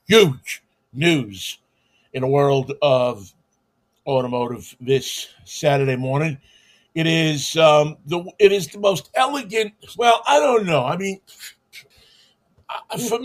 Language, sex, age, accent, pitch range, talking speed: English, male, 50-69, American, 145-205 Hz, 120 wpm